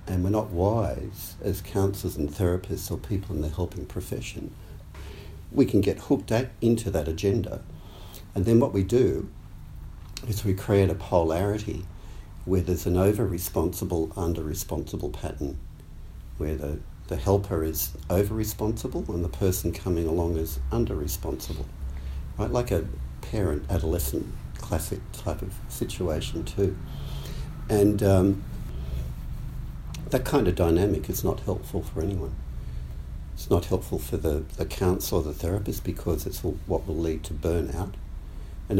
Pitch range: 80-100 Hz